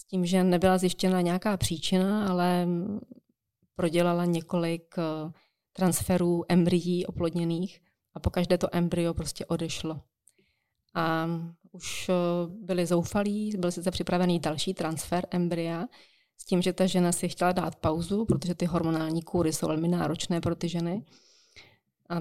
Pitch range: 170-185 Hz